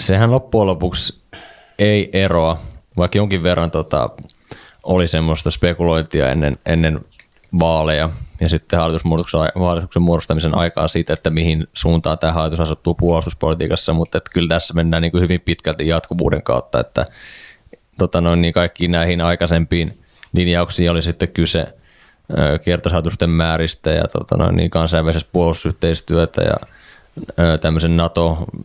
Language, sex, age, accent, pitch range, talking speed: Finnish, male, 20-39, native, 80-90 Hz, 125 wpm